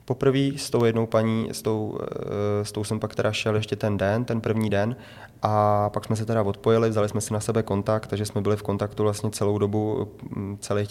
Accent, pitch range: native, 100-110 Hz